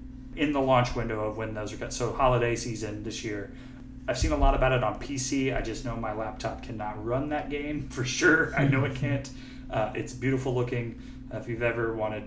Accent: American